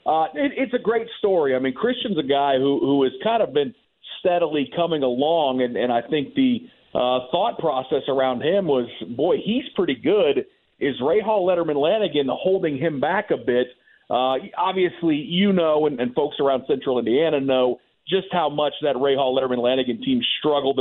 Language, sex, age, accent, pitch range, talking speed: English, male, 50-69, American, 135-185 Hz, 185 wpm